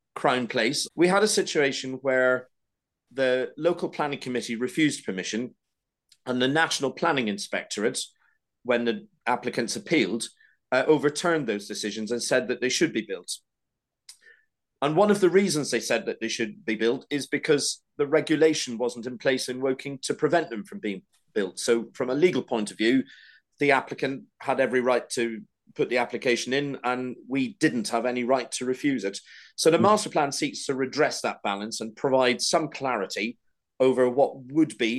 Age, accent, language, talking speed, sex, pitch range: 40-59, British, English, 175 wpm, male, 115-145 Hz